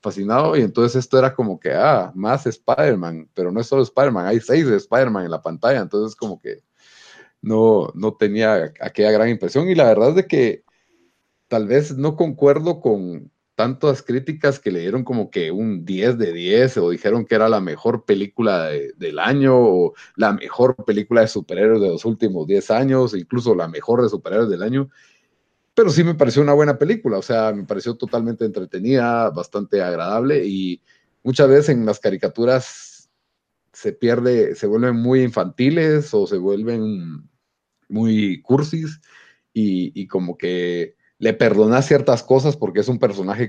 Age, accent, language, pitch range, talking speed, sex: 40-59, Mexican, Spanish, 105-140 Hz, 170 wpm, male